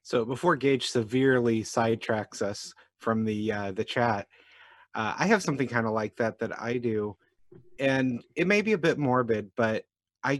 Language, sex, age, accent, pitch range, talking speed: English, male, 30-49, American, 115-135 Hz, 180 wpm